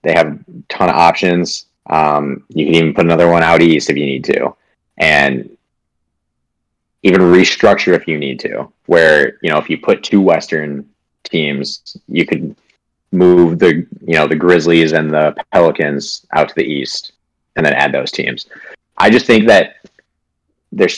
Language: English